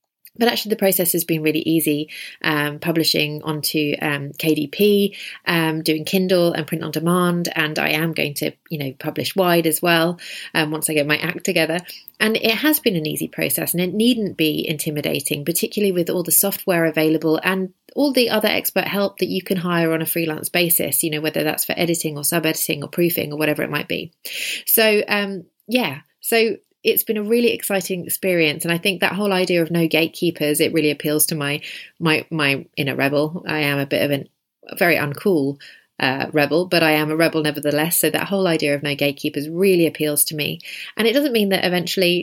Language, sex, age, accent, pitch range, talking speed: English, female, 30-49, British, 155-190 Hz, 210 wpm